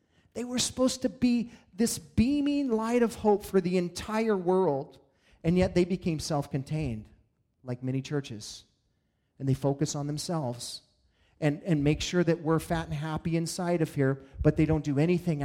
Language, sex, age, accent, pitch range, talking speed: English, male, 40-59, American, 145-180 Hz, 170 wpm